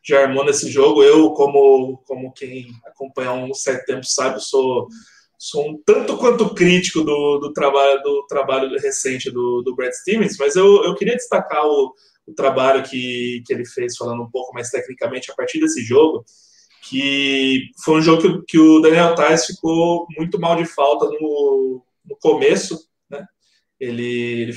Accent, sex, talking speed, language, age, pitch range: Brazilian, male, 170 wpm, Portuguese, 20-39, 135-195 Hz